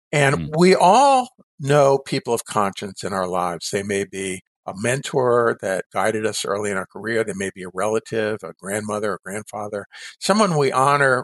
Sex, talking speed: male, 180 wpm